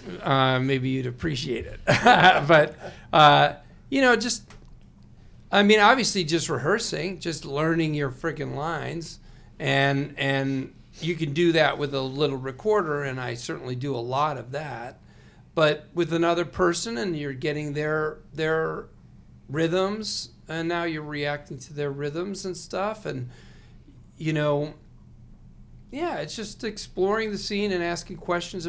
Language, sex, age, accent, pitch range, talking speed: English, male, 40-59, American, 135-175 Hz, 145 wpm